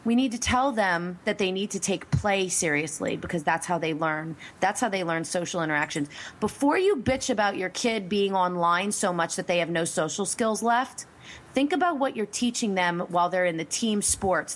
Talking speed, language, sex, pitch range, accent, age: 215 wpm, English, female, 160-220 Hz, American, 30-49